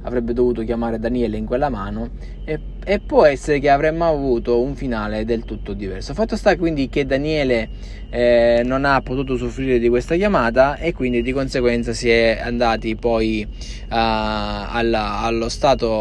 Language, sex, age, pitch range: Italian, male, 20-39, 110-140 Hz